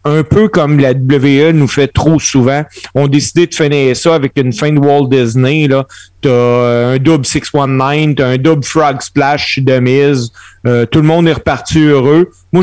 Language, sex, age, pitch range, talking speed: French, male, 40-59, 130-175 Hz, 195 wpm